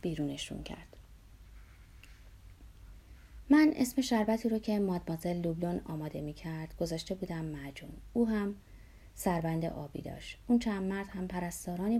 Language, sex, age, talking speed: Persian, female, 30-49, 125 wpm